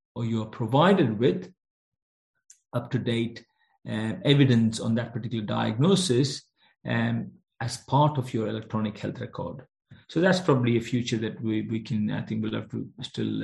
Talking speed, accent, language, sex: 145 wpm, Indian, English, male